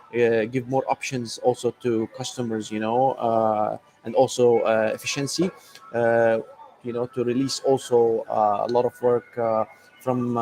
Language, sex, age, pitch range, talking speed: English, male, 20-39, 115-140 Hz, 155 wpm